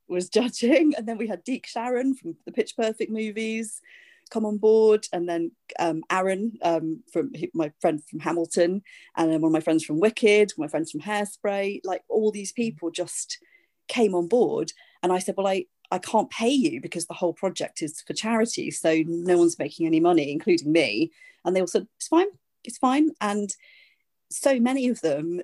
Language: English